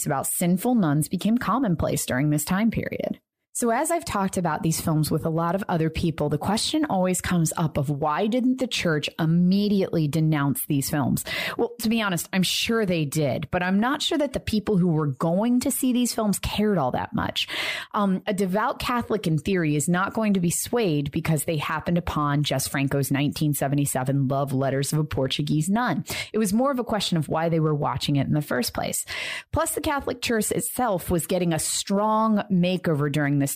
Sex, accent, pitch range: female, American, 155-220 Hz